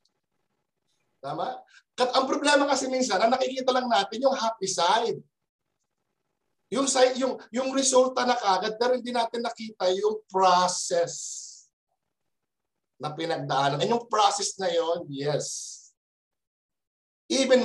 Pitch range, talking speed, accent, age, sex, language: 150-240 Hz, 120 wpm, native, 50-69, male, Filipino